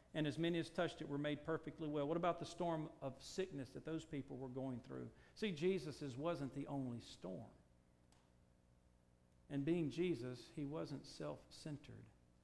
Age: 50-69